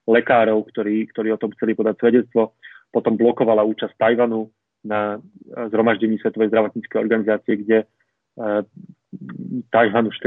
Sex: male